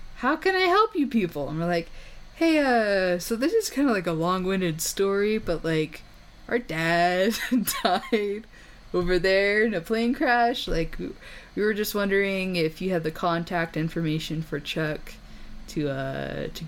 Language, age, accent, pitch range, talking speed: English, 10-29, American, 160-235 Hz, 175 wpm